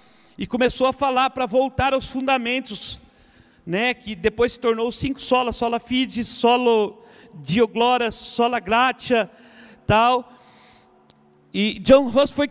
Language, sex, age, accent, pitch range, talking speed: Portuguese, male, 50-69, Brazilian, 220-260 Hz, 130 wpm